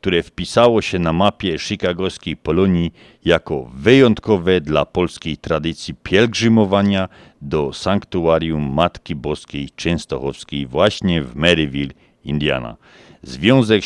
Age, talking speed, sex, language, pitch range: 50-69, 100 wpm, male, Polish, 80-105 Hz